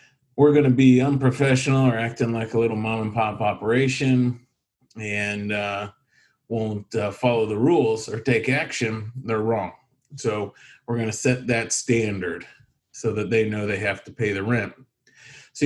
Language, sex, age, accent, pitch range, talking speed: English, male, 40-59, American, 110-135 Hz, 170 wpm